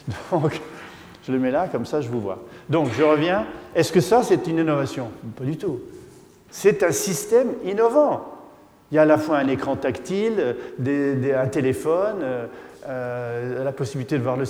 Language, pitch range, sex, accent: French, 130-165 Hz, male, French